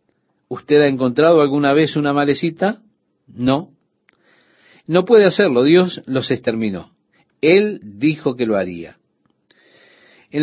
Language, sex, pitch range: Spanish, male, 120-165 Hz